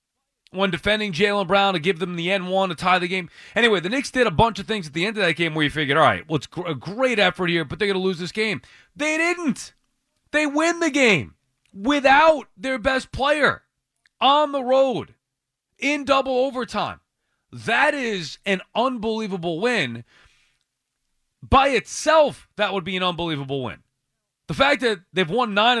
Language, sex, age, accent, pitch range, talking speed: English, male, 30-49, American, 170-235 Hz, 190 wpm